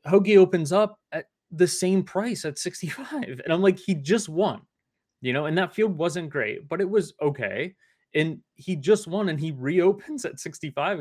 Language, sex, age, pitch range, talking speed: English, male, 20-39, 120-180 Hz, 190 wpm